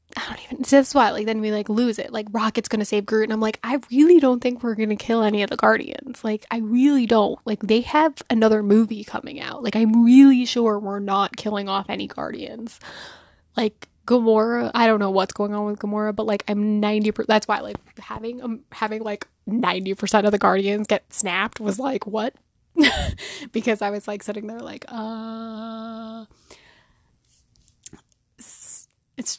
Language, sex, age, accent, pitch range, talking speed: English, female, 10-29, American, 205-230 Hz, 185 wpm